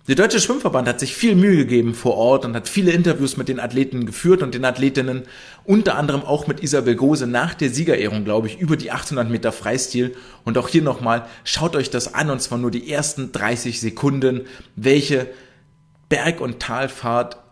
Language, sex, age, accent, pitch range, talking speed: German, male, 30-49, German, 115-140 Hz, 190 wpm